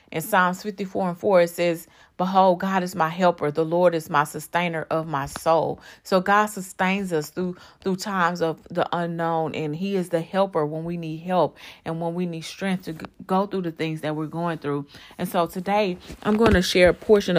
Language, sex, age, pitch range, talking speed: English, female, 30-49, 160-180 Hz, 215 wpm